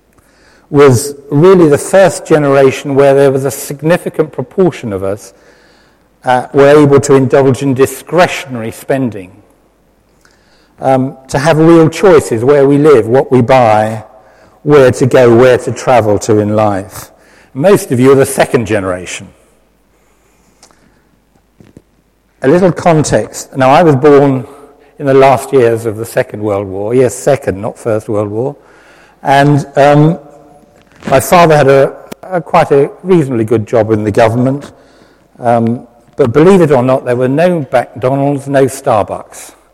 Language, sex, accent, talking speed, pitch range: English, male, British, 145 wpm, 115-145 Hz